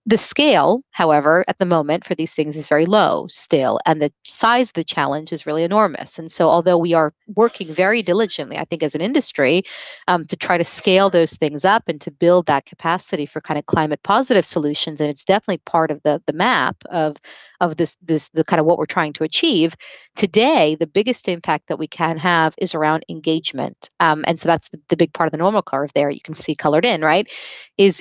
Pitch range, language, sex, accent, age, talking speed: 155-185 Hz, English, female, American, 30-49, 225 wpm